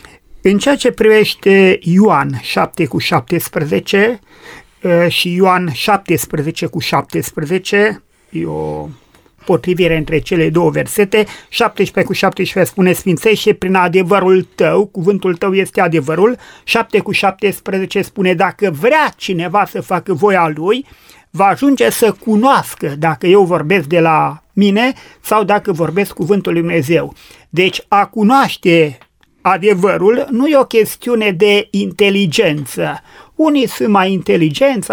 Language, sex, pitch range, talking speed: Romanian, male, 175-220 Hz, 125 wpm